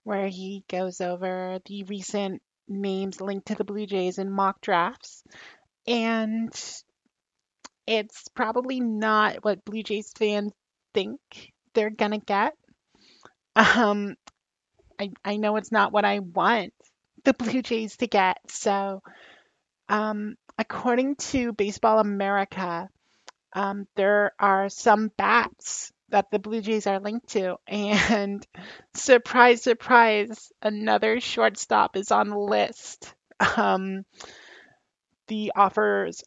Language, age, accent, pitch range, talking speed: English, 30-49, American, 195-220 Hz, 120 wpm